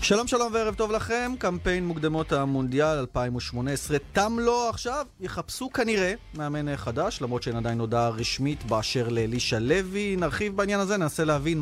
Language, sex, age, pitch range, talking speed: Hebrew, male, 30-49, 125-180 Hz, 150 wpm